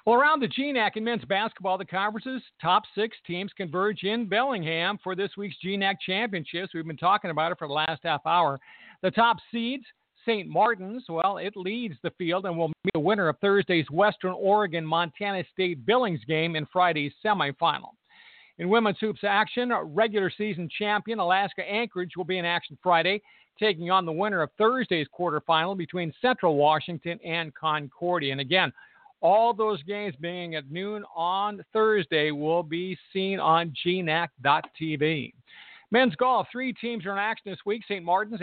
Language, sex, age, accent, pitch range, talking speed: English, male, 50-69, American, 170-210 Hz, 165 wpm